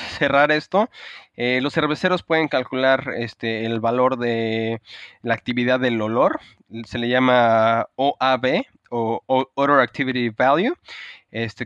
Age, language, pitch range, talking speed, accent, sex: 20-39, Spanish, 115-135 Hz, 125 wpm, Mexican, male